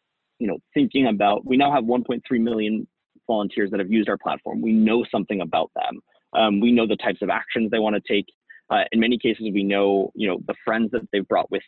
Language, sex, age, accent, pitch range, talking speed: English, male, 30-49, American, 100-125 Hz, 225 wpm